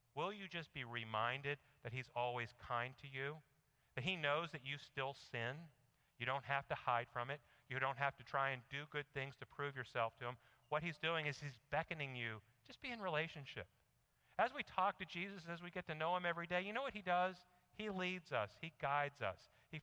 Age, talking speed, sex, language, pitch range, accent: 50-69, 225 wpm, male, English, 125-170 Hz, American